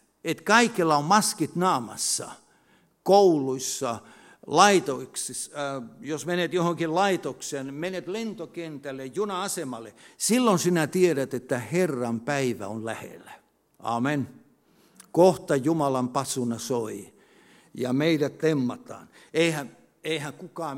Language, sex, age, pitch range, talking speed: Finnish, male, 60-79, 155-220 Hz, 100 wpm